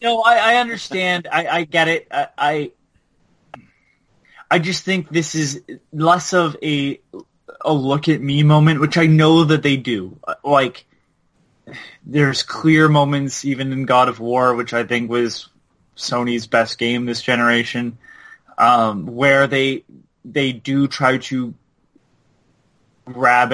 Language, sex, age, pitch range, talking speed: English, male, 20-39, 120-150 Hz, 140 wpm